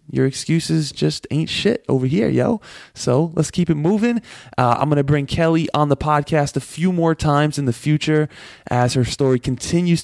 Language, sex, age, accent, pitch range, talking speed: English, male, 20-39, American, 115-145 Hz, 195 wpm